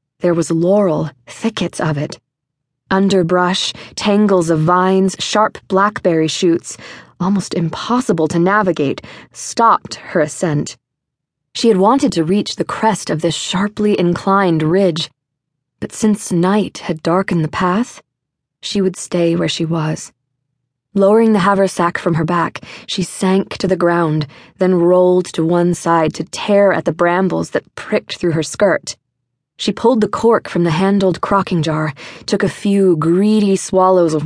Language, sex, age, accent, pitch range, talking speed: English, female, 20-39, American, 160-195 Hz, 150 wpm